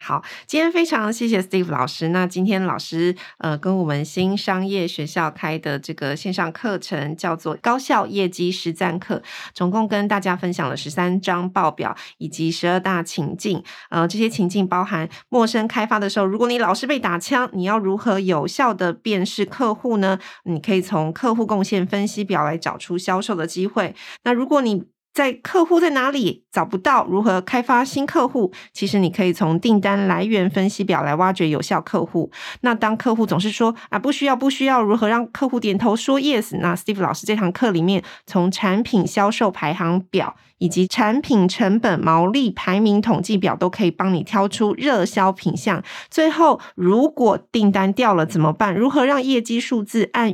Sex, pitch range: female, 180-225 Hz